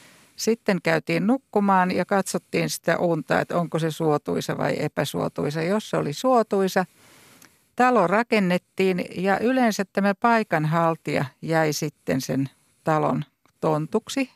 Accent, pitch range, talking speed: native, 165-205 Hz, 115 wpm